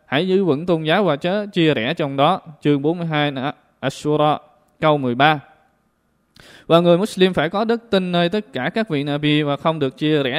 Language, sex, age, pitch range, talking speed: Vietnamese, male, 20-39, 145-185 Hz, 195 wpm